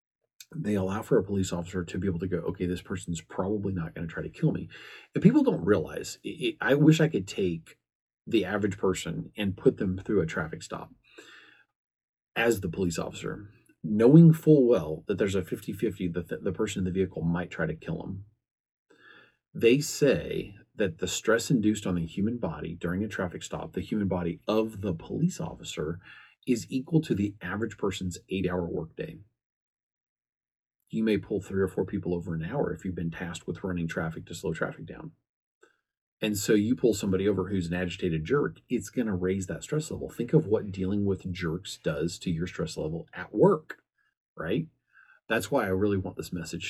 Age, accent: 40-59, American